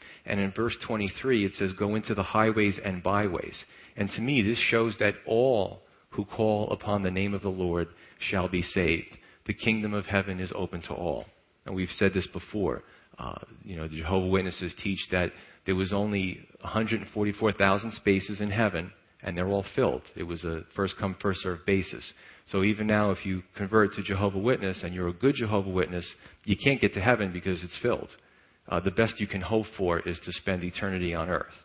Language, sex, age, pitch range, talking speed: English, male, 40-59, 90-105 Hz, 195 wpm